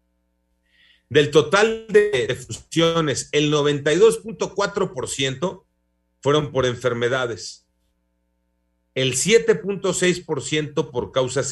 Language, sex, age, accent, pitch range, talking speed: Spanish, male, 40-59, Mexican, 100-155 Hz, 70 wpm